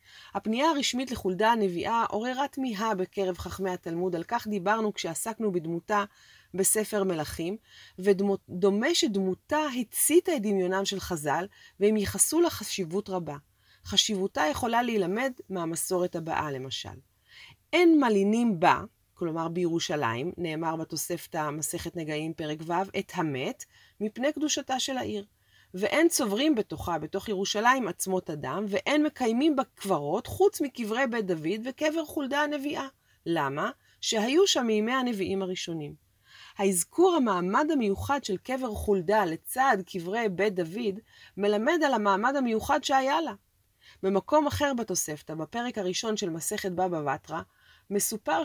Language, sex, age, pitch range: Hebrew, female, 30-49, 175-250 Hz